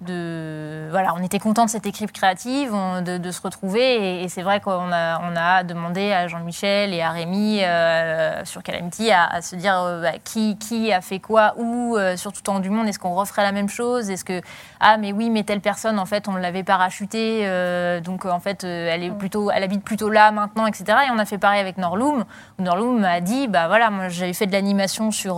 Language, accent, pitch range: French, French, 180-215 Hz